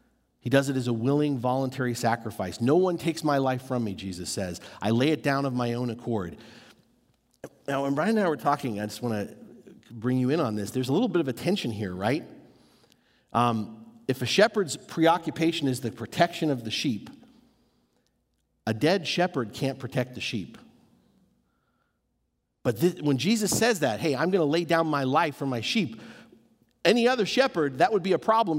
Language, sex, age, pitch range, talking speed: English, male, 50-69, 125-170 Hz, 195 wpm